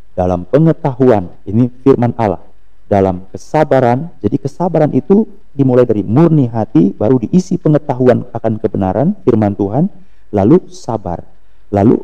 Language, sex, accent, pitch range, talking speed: Indonesian, male, native, 100-145 Hz, 120 wpm